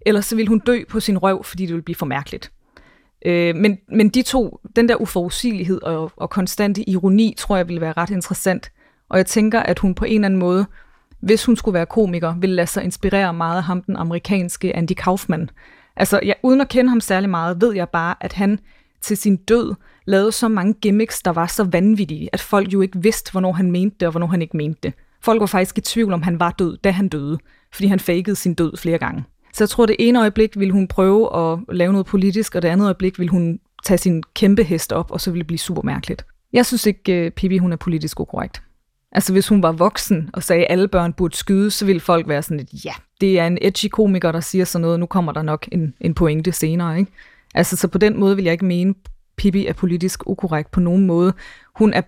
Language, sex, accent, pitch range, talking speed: Danish, female, native, 175-210 Hz, 235 wpm